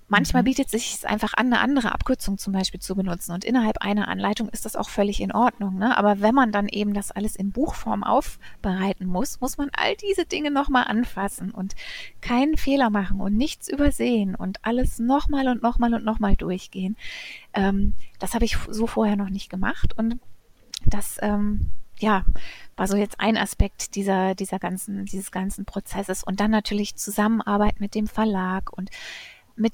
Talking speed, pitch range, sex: 180 wpm, 195-230 Hz, female